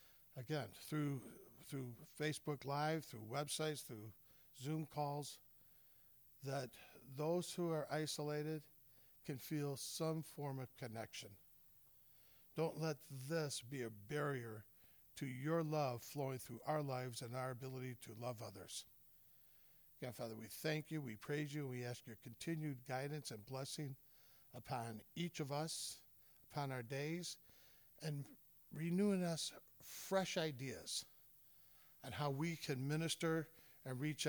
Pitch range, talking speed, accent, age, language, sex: 125-155 Hz, 130 wpm, American, 50-69, English, male